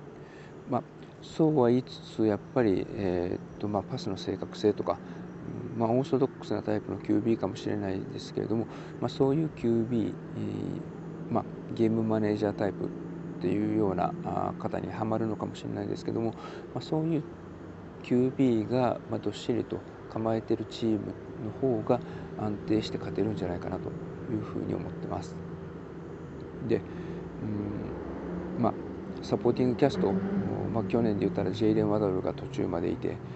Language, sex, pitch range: Japanese, male, 105-130 Hz